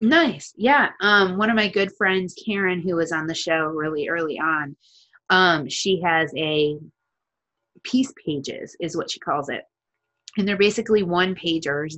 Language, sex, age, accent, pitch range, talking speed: English, female, 20-39, American, 150-185 Hz, 165 wpm